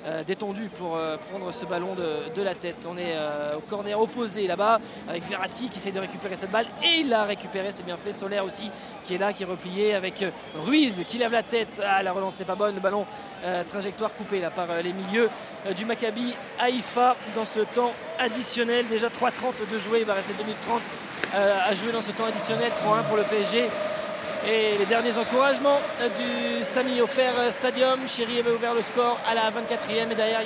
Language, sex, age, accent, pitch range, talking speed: French, male, 20-39, French, 195-240 Hz, 205 wpm